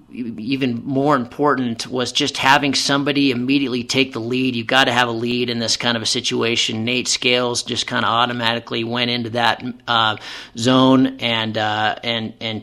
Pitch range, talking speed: 115-130 Hz, 180 wpm